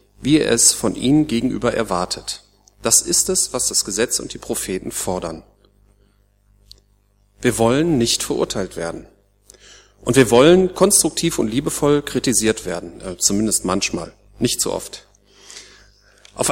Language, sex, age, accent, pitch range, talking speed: German, male, 40-59, German, 100-150 Hz, 130 wpm